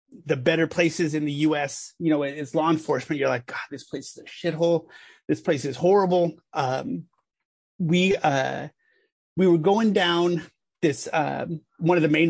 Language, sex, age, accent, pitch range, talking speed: English, male, 30-49, American, 150-175 Hz, 180 wpm